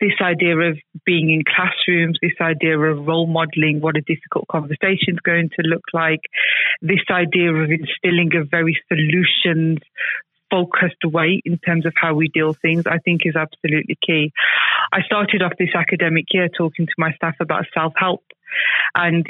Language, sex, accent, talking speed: English, female, British, 170 wpm